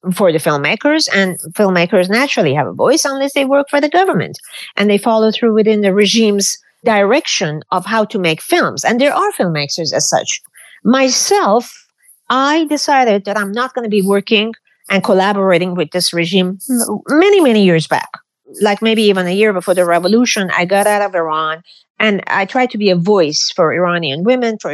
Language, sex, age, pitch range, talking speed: English, female, 50-69, 180-240 Hz, 185 wpm